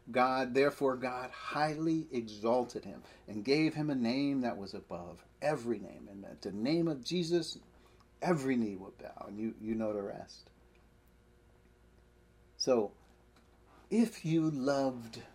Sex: male